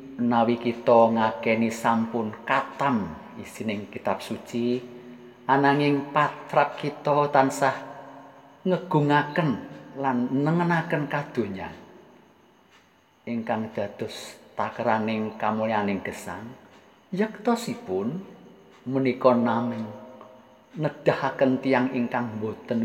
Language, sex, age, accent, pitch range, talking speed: Indonesian, male, 50-69, native, 110-145 Hz, 75 wpm